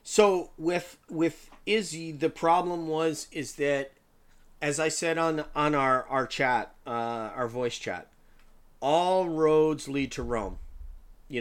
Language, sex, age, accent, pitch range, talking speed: English, male, 40-59, American, 125-160 Hz, 140 wpm